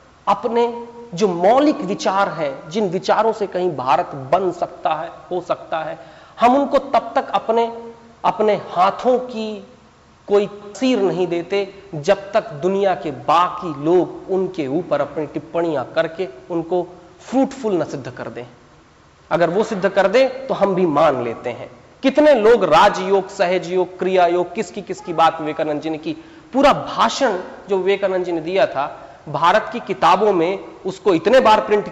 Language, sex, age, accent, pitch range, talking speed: Hindi, male, 40-59, native, 160-215 Hz, 160 wpm